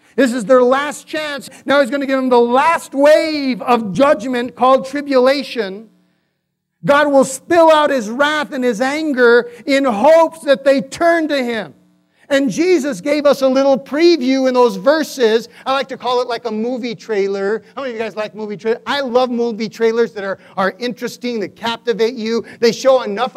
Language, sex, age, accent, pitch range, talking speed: English, male, 40-59, American, 230-295 Hz, 195 wpm